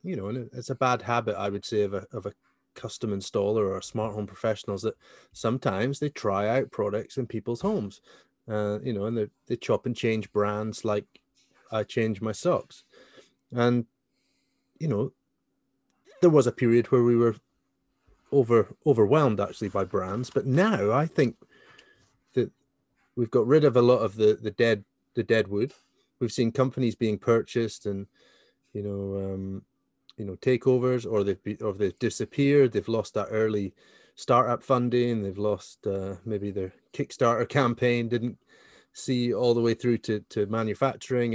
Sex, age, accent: male, 30-49, British